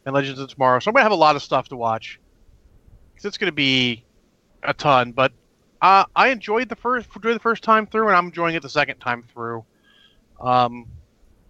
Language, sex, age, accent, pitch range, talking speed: English, male, 30-49, American, 125-175 Hz, 215 wpm